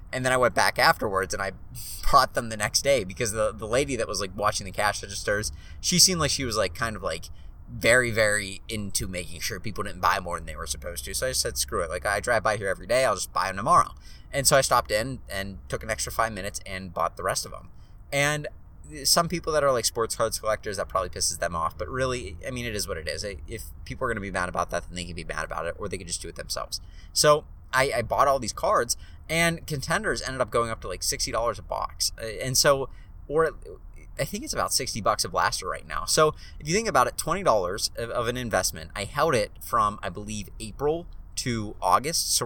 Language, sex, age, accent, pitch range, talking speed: English, male, 30-49, American, 95-145 Hz, 250 wpm